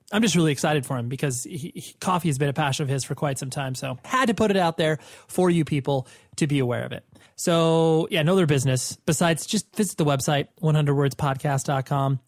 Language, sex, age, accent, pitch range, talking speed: English, male, 30-49, American, 135-170 Hz, 225 wpm